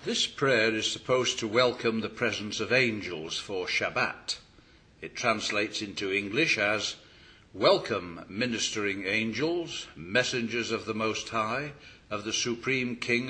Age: 60-79